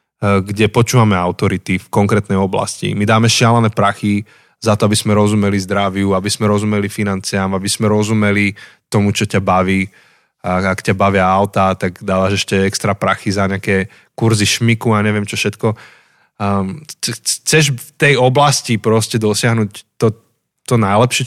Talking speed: 150 wpm